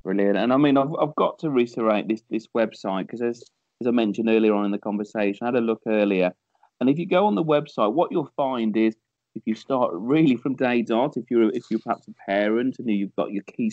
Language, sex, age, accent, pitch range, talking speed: English, male, 30-49, British, 110-140 Hz, 250 wpm